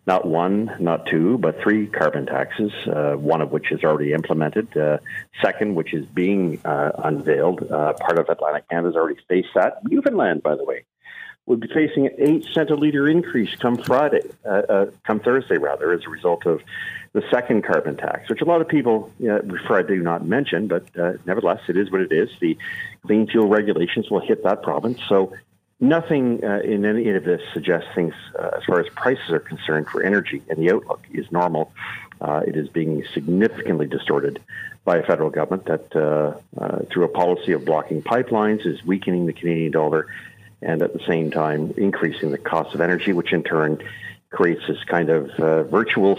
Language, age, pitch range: English, 50-69, 80-120 Hz